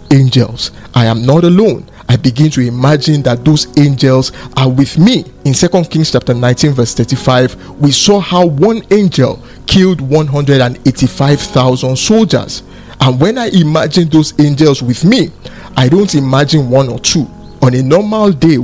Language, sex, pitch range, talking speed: English, male, 125-160 Hz, 155 wpm